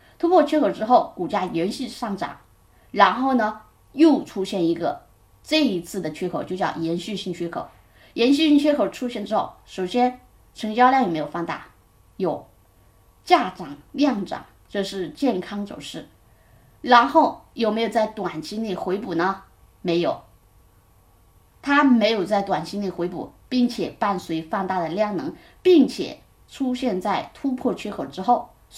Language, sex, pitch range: Chinese, female, 165-245 Hz